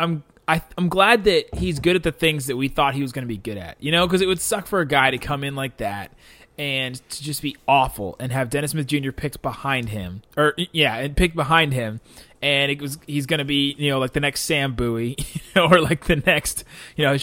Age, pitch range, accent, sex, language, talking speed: 20-39, 120-155 Hz, American, male, English, 260 wpm